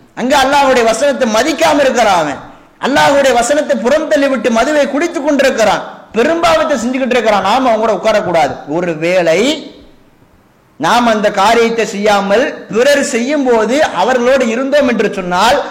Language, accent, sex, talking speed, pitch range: English, Indian, male, 105 wpm, 220-285 Hz